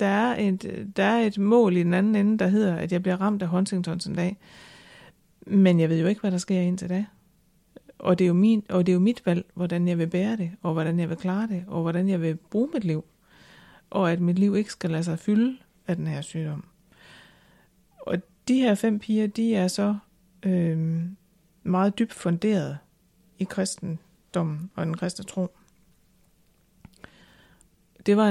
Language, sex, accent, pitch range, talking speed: Danish, female, native, 175-205 Hz, 190 wpm